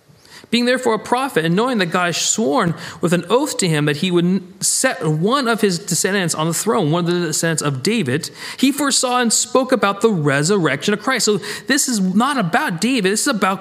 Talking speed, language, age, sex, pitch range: 220 wpm, English, 40-59, male, 165-235 Hz